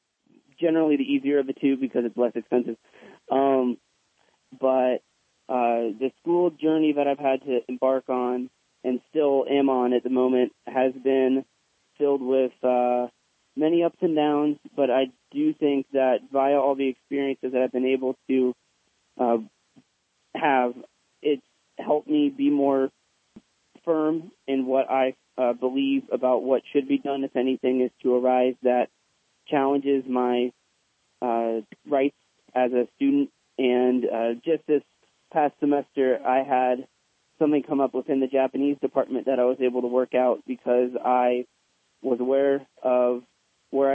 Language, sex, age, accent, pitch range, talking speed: English, male, 20-39, American, 125-140 Hz, 150 wpm